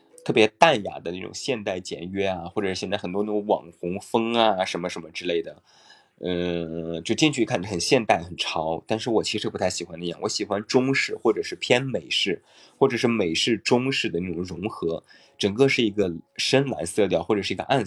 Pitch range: 90-115 Hz